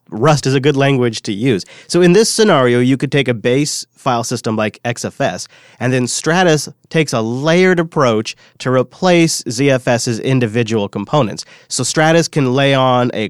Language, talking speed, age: English, 170 wpm, 30-49